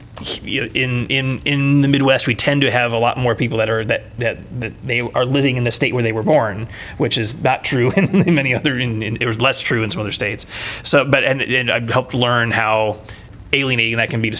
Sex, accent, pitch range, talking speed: male, American, 110-130 Hz, 240 wpm